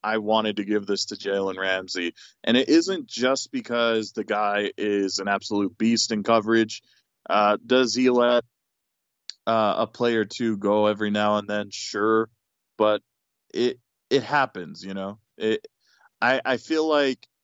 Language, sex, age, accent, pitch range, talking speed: English, male, 20-39, American, 105-120 Hz, 160 wpm